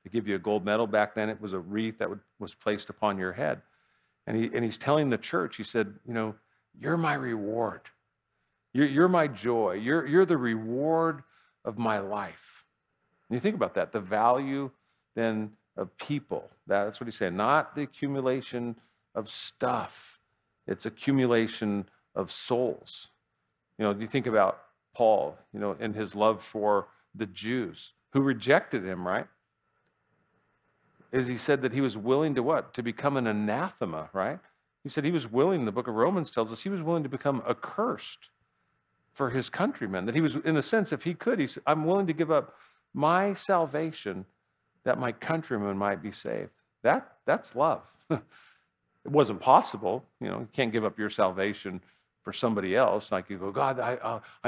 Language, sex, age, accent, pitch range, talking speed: English, male, 50-69, American, 105-145 Hz, 180 wpm